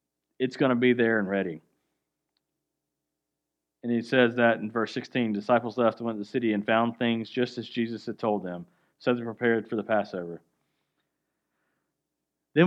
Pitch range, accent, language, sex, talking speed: 105-125 Hz, American, English, male, 175 wpm